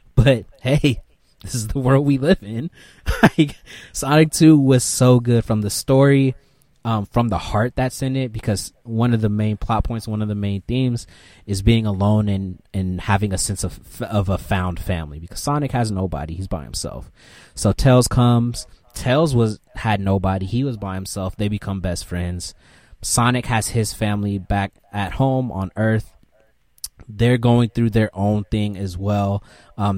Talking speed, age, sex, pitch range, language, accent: 180 wpm, 20-39, male, 95-125 Hz, English, American